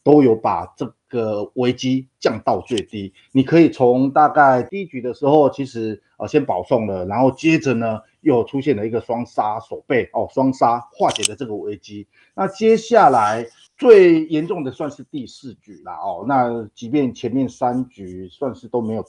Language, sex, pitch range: Chinese, male, 110-145 Hz